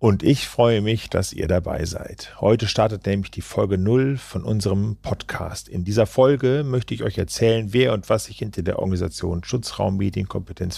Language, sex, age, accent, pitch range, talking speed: German, male, 50-69, German, 95-115 Hz, 185 wpm